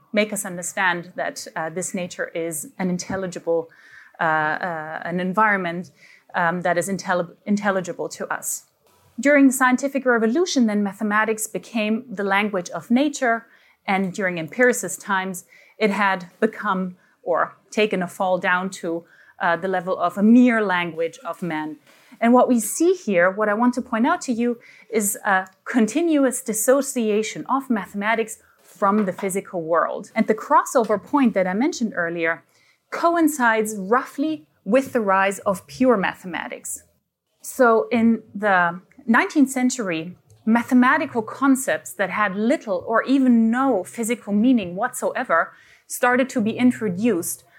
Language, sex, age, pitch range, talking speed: English, female, 30-49, 180-235 Hz, 140 wpm